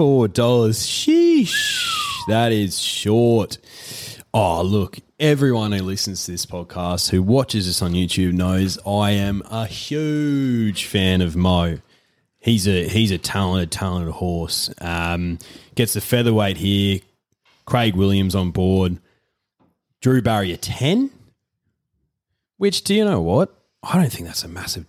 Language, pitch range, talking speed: English, 85-115 Hz, 135 wpm